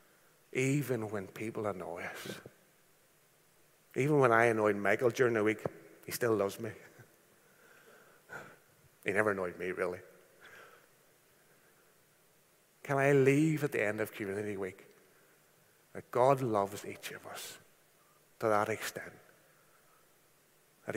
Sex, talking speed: male, 115 wpm